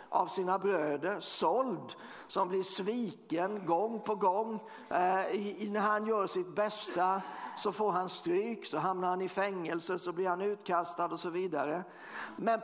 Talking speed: 160 wpm